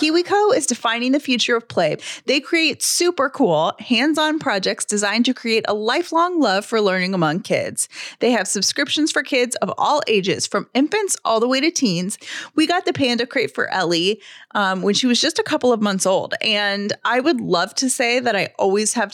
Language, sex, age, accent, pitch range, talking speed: English, female, 30-49, American, 200-285 Hz, 205 wpm